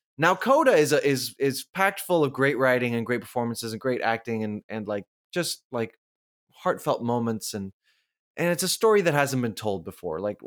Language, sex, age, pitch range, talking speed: English, male, 20-39, 115-160 Hz, 200 wpm